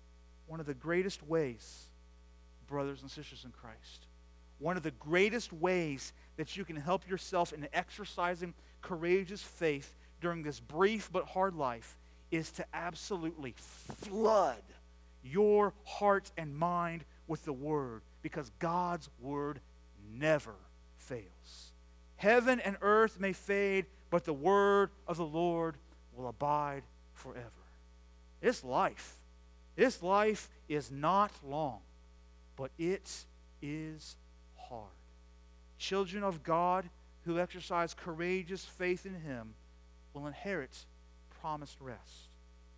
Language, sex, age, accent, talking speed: English, male, 40-59, American, 120 wpm